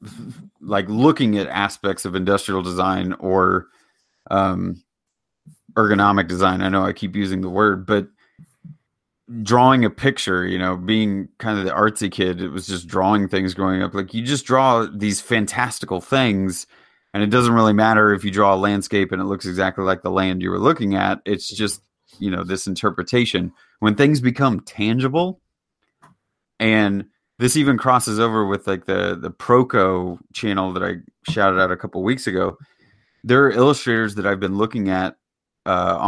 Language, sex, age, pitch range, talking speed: English, male, 30-49, 95-115 Hz, 170 wpm